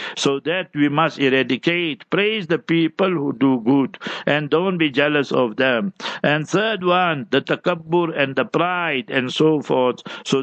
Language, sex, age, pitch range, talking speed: English, male, 60-79, 140-170 Hz, 165 wpm